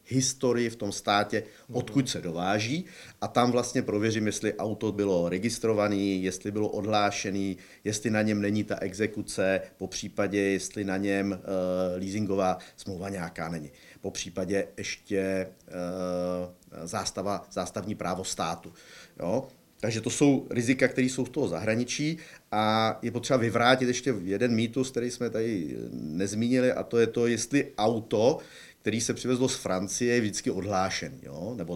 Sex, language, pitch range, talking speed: male, Czech, 95-120 Hz, 140 wpm